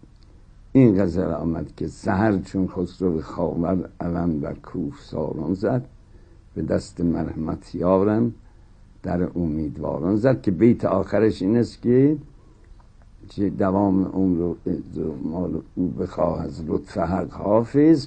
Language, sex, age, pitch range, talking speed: Persian, male, 60-79, 90-110 Hz, 110 wpm